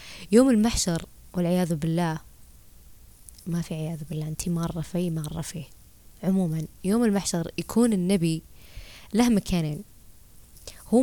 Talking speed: 115 wpm